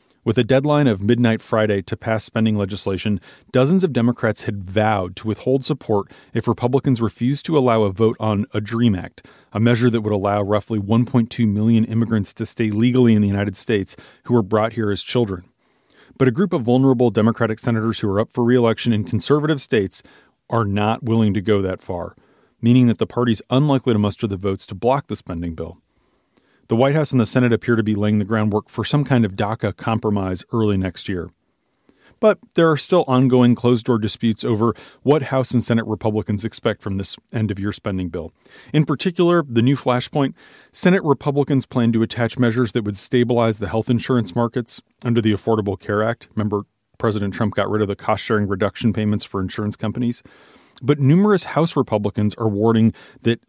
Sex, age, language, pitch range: male, 30-49, English, 105-125 Hz